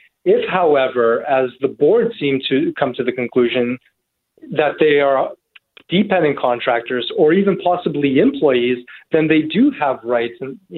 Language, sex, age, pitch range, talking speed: English, male, 30-49, 135-160 Hz, 145 wpm